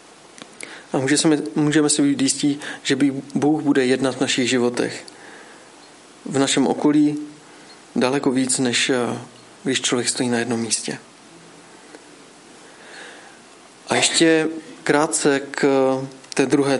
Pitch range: 130-155 Hz